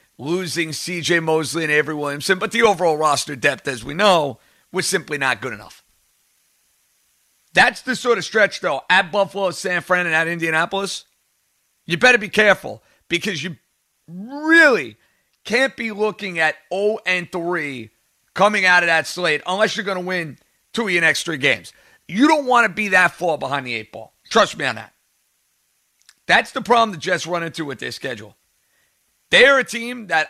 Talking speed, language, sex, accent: 180 wpm, English, male, American